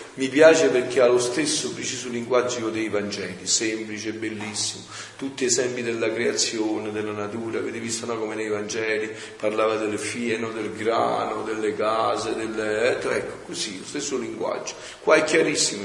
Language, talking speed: Italian, 150 wpm